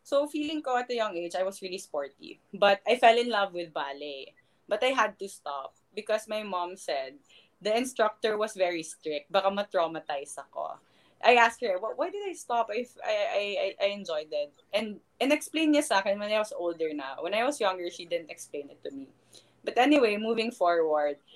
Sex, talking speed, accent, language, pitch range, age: female, 205 wpm, native, Filipino, 180-250 Hz, 20-39